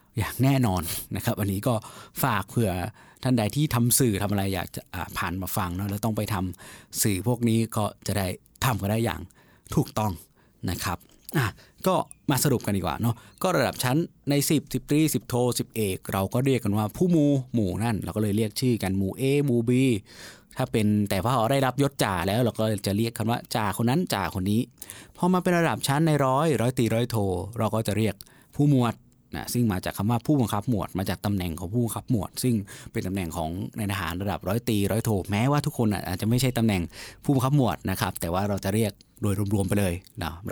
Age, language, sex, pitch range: 20-39, Thai, male, 100-125 Hz